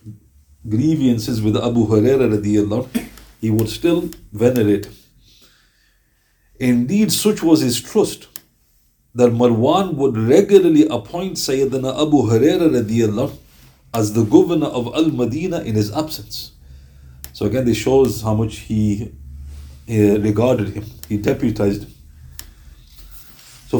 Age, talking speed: 50-69, 110 wpm